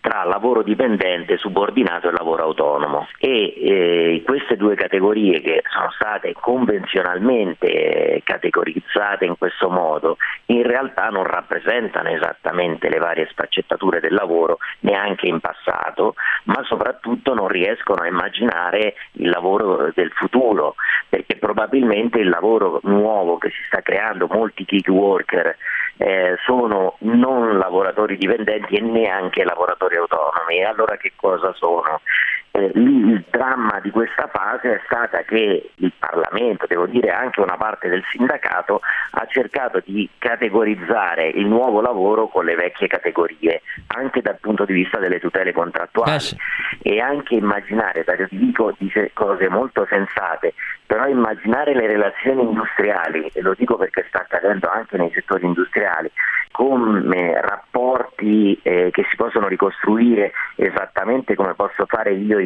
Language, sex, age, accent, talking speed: Italian, male, 40-59, native, 115 wpm